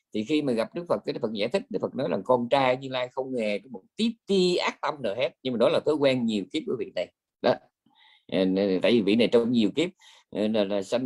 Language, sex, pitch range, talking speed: Vietnamese, male, 110-185 Hz, 275 wpm